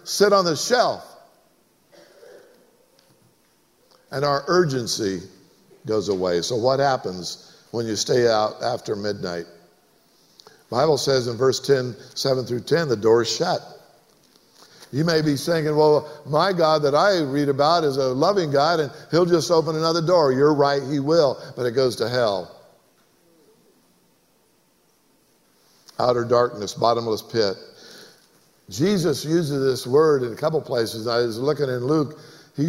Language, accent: English, American